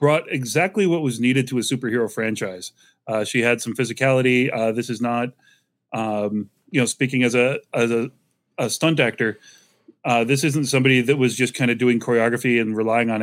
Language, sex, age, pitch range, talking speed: English, male, 30-49, 115-135 Hz, 195 wpm